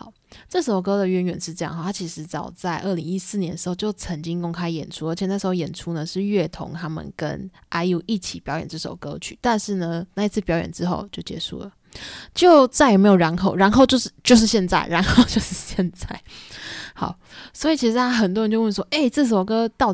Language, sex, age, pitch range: Chinese, female, 20-39, 175-220 Hz